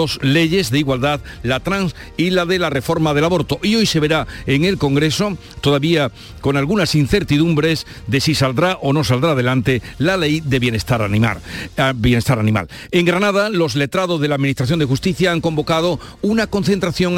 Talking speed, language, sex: 175 wpm, Spanish, male